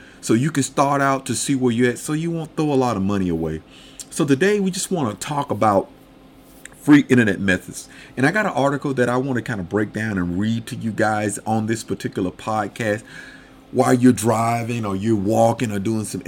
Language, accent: English, American